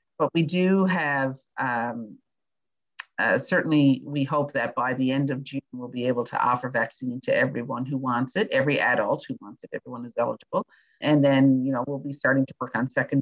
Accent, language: American, English